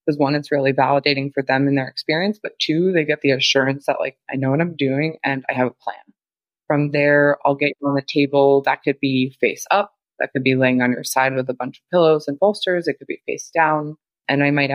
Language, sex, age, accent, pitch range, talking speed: English, female, 20-39, American, 135-155 Hz, 255 wpm